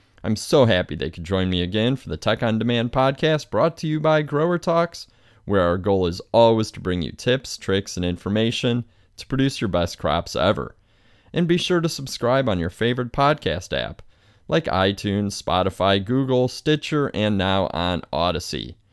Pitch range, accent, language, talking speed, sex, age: 90-125 Hz, American, English, 180 wpm, male, 30-49